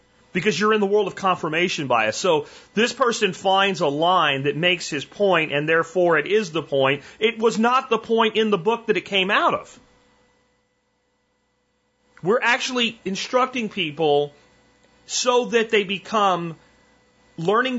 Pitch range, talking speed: 165-225 Hz, 155 wpm